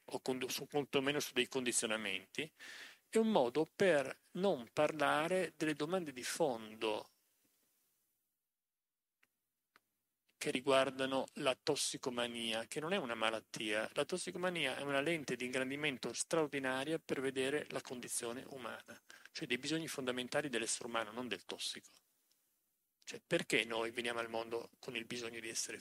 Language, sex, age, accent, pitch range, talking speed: Italian, male, 40-59, native, 115-160 Hz, 135 wpm